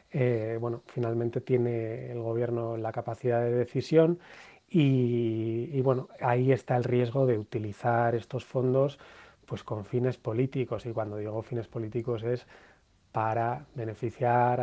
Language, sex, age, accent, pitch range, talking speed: Spanish, male, 30-49, Spanish, 115-125 Hz, 135 wpm